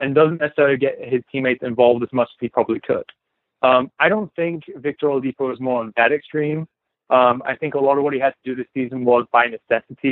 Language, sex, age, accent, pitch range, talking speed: English, male, 20-39, American, 125-145 Hz, 235 wpm